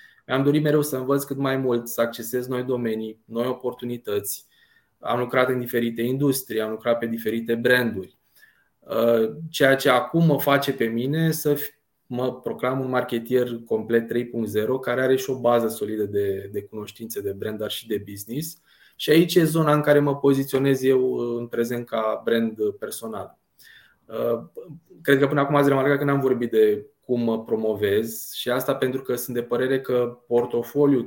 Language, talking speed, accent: Romanian, 170 wpm, native